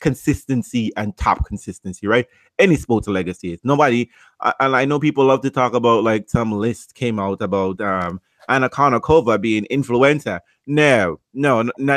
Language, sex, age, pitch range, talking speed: English, male, 30-49, 115-155 Hz, 165 wpm